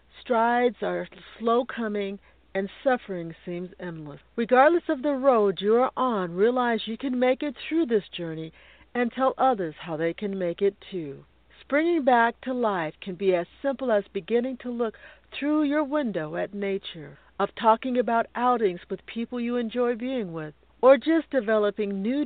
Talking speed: 170 wpm